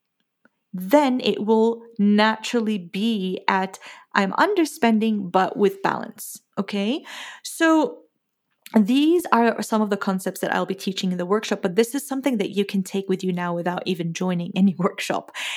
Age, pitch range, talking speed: 30-49, 195-250 Hz, 160 wpm